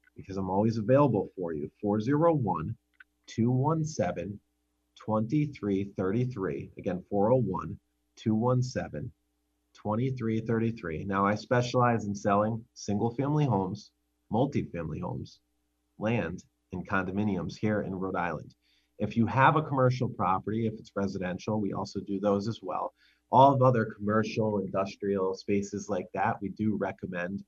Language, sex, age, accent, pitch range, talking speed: English, male, 30-49, American, 95-115 Hz, 125 wpm